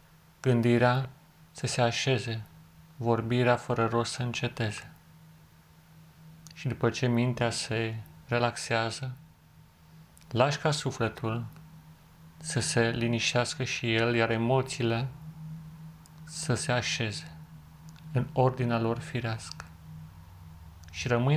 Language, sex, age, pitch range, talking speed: Romanian, male, 30-49, 85-130 Hz, 95 wpm